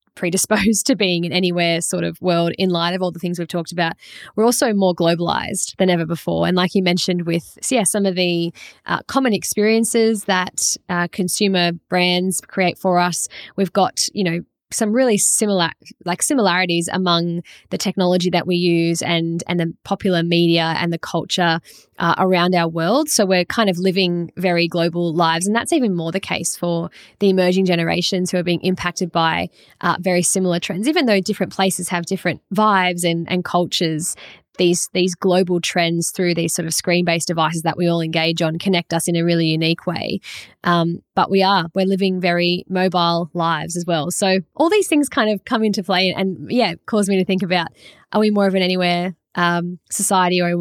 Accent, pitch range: Australian, 170-195 Hz